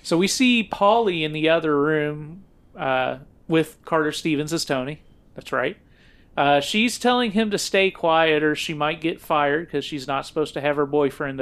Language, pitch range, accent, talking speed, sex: English, 140-170 Hz, American, 190 wpm, male